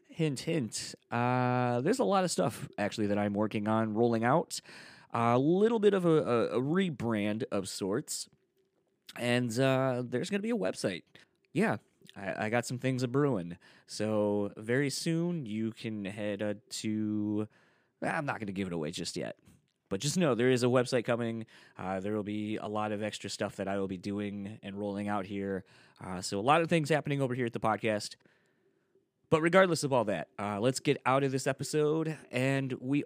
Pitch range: 105-140 Hz